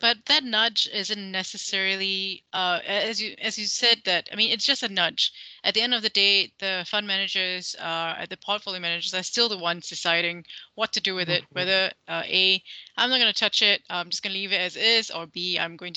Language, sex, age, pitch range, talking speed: English, female, 20-39, 180-225 Hz, 235 wpm